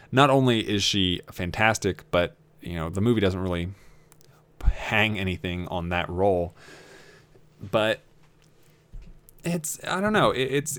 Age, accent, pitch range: 20-39, American, 90-120 Hz